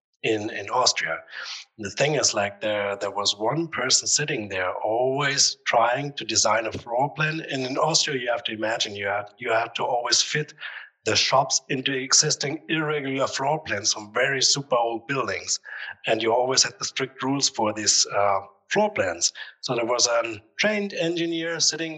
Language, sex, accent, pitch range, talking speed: English, male, German, 125-165 Hz, 185 wpm